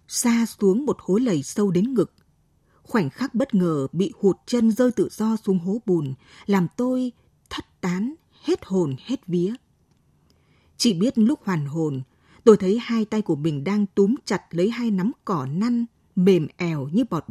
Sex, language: female, Vietnamese